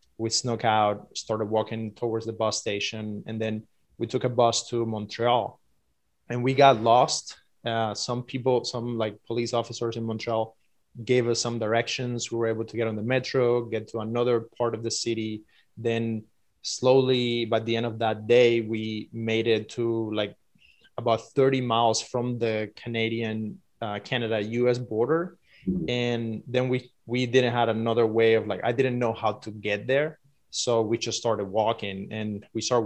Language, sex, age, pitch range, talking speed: English, male, 20-39, 110-120 Hz, 175 wpm